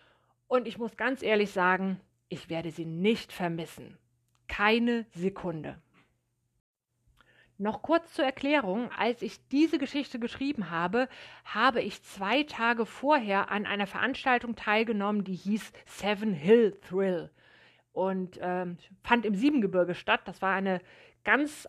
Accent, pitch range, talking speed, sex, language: German, 190-250 Hz, 130 wpm, female, German